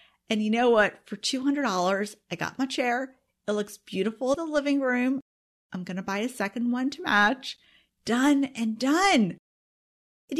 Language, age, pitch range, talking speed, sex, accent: English, 40-59, 210-280 Hz, 175 wpm, female, American